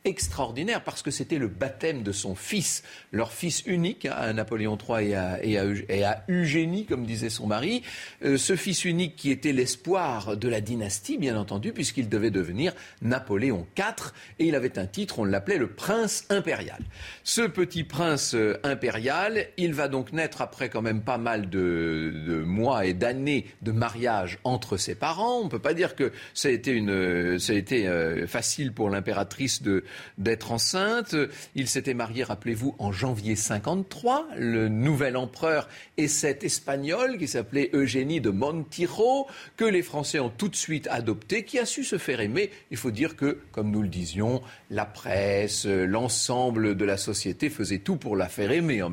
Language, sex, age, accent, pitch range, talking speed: French, male, 40-59, French, 105-160 Hz, 180 wpm